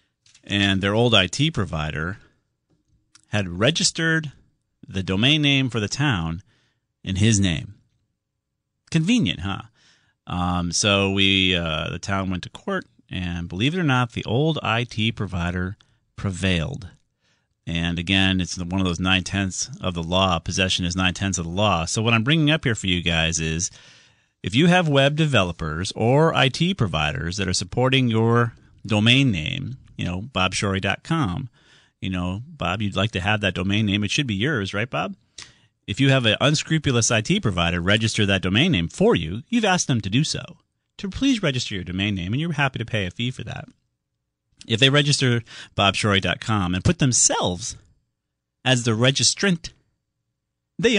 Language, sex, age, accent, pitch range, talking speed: English, male, 40-59, American, 95-130 Hz, 165 wpm